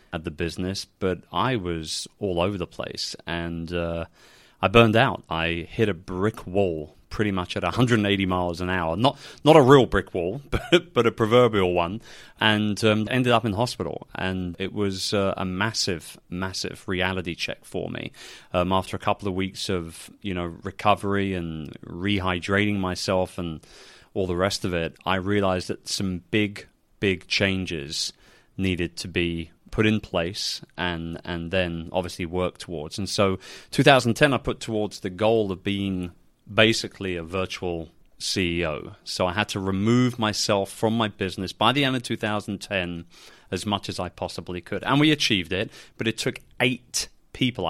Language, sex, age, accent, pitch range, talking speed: English, male, 30-49, British, 90-110 Hz, 170 wpm